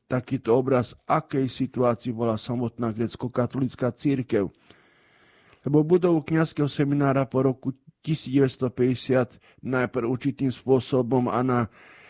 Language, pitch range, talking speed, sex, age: Slovak, 120-135 Hz, 95 wpm, male, 50-69